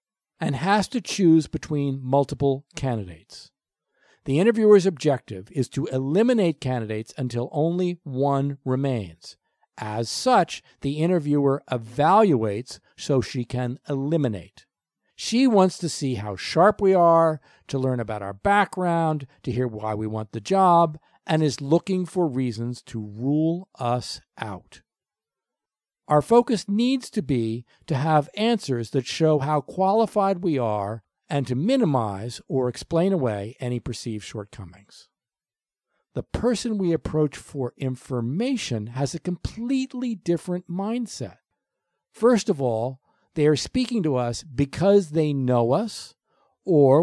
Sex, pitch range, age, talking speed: male, 120-180 Hz, 50-69, 130 wpm